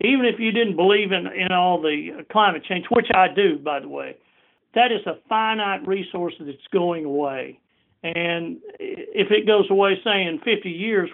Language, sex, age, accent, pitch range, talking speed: English, male, 50-69, American, 175-215 Hz, 180 wpm